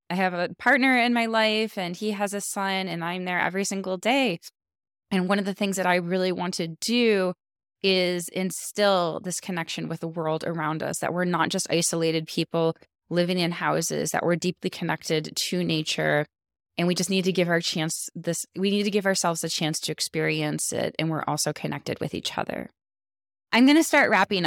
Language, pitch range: English, 165-195 Hz